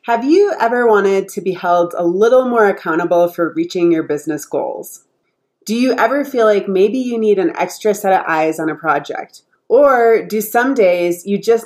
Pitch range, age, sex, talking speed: 180-240 Hz, 30-49, female, 195 wpm